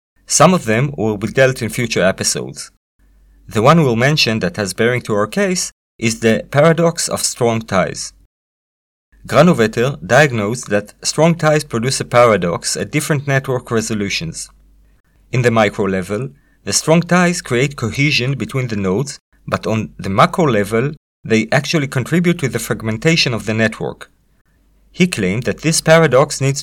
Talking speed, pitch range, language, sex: 155 wpm, 110-150 Hz, English, male